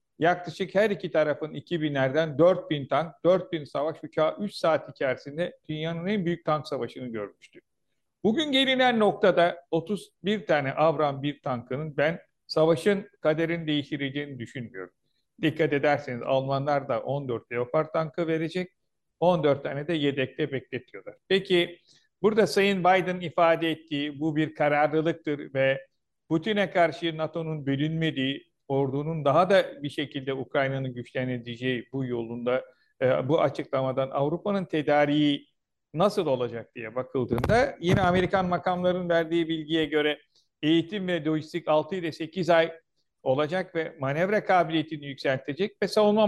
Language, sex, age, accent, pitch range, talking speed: Turkish, male, 50-69, native, 140-180 Hz, 125 wpm